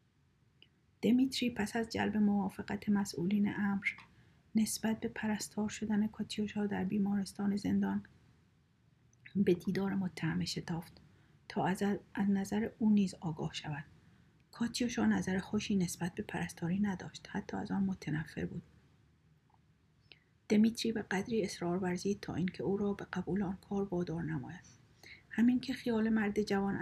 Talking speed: 130 wpm